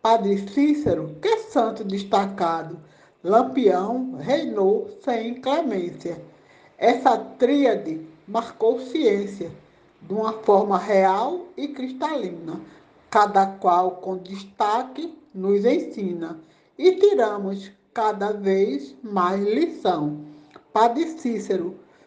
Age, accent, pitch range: 60-79, Brazilian, 160-225 Hz